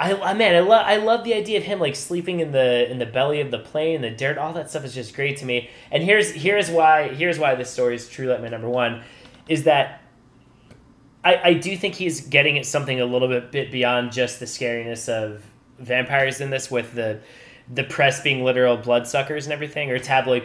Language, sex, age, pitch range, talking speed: English, male, 20-39, 120-150 Hz, 225 wpm